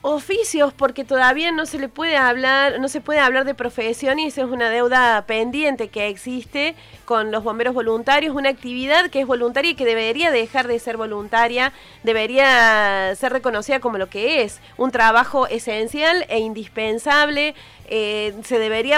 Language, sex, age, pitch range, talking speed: Spanish, female, 30-49, 225-275 Hz, 170 wpm